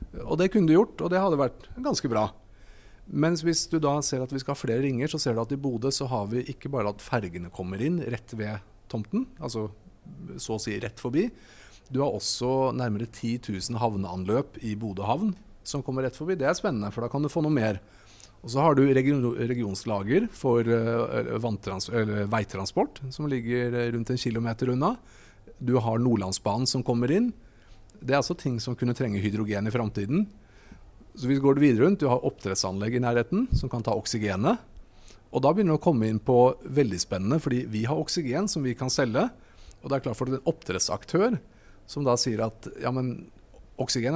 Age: 30-49